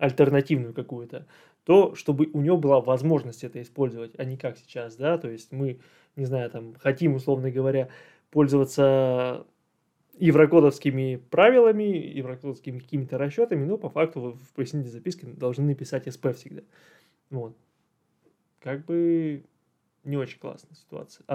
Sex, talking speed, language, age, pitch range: male, 135 wpm, Russian, 20-39, 130-155 Hz